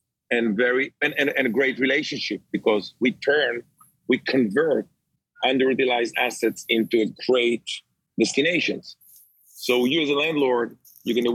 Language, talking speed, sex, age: English, 130 wpm, male, 40-59